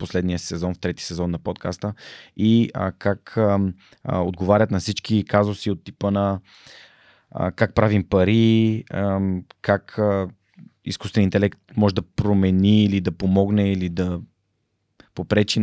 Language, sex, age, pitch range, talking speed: Bulgarian, male, 20-39, 95-110 Hz, 135 wpm